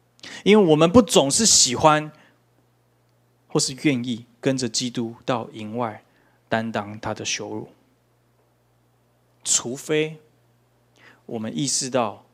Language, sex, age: Chinese, male, 20-39